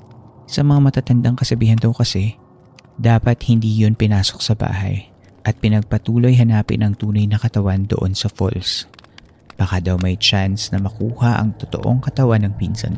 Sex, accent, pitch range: male, native, 100-120 Hz